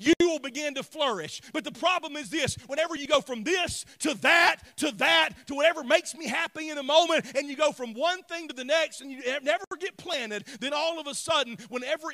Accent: American